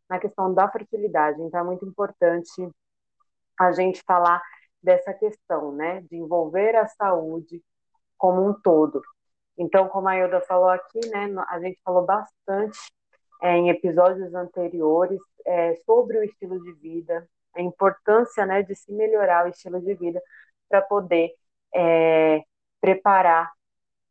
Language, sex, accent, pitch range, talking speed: Portuguese, female, Brazilian, 170-195 Hz, 140 wpm